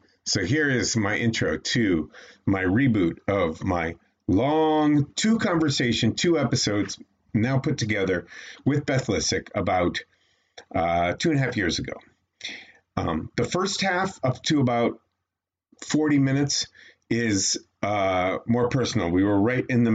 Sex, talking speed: male, 140 wpm